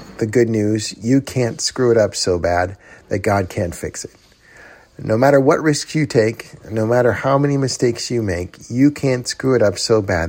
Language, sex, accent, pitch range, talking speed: English, male, American, 95-130 Hz, 205 wpm